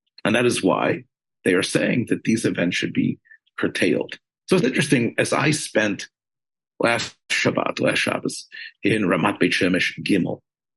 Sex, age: male, 50-69